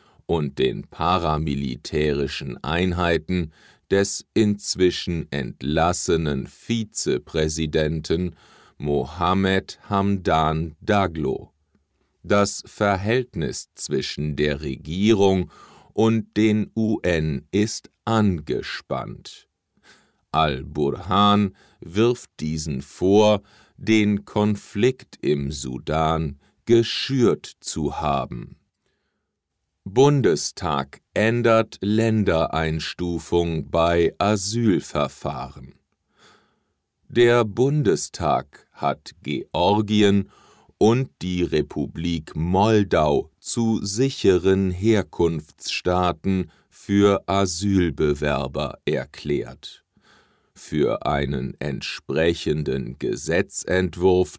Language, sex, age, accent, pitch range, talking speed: English, male, 50-69, German, 80-105 Hz, 60 wpm